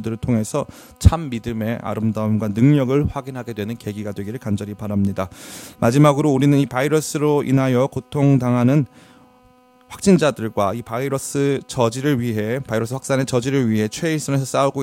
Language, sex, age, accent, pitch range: Korean, male, 30-49, native, 110-140 Hz